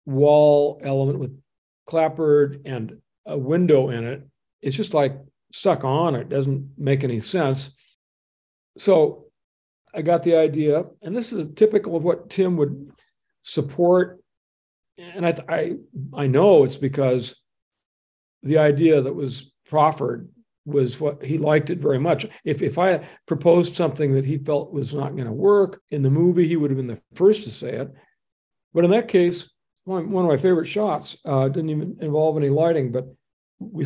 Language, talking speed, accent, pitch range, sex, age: English, 170 wpm, American, 135-165 Hz, male, 50-69